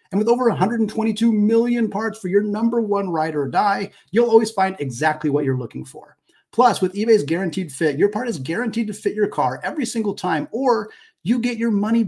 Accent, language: American, English